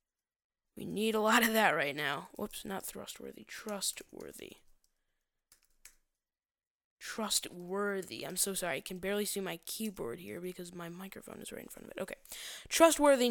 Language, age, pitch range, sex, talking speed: English, 10-29, 190-245 Hz, female, 155 wpm